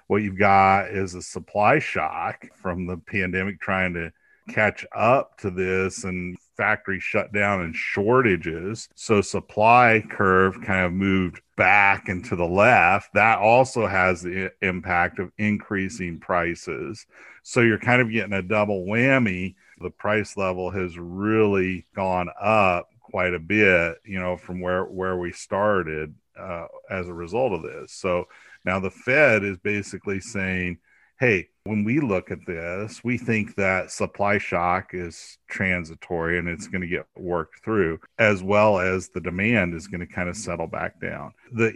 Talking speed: 160 wpm